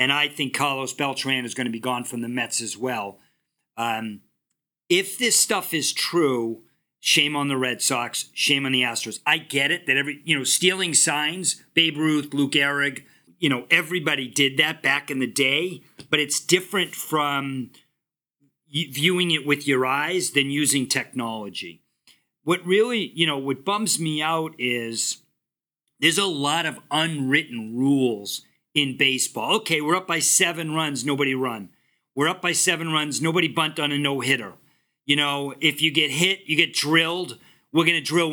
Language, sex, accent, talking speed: English, male, American, 175 wpm